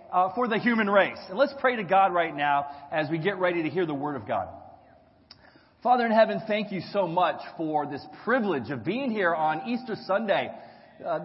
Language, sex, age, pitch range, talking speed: English, male, 30-49, 170-225 Hz, 210 wpm